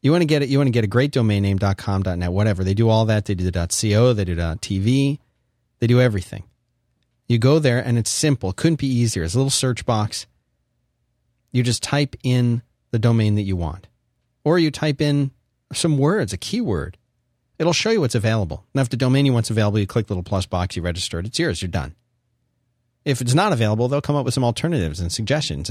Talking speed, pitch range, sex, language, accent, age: 230 wpm, 100-135 Hz, male, English, American, 40-59